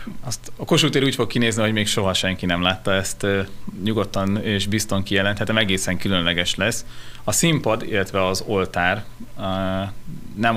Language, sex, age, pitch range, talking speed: Hungarian, male, 30-49, 85-110 Hz, 160 wpm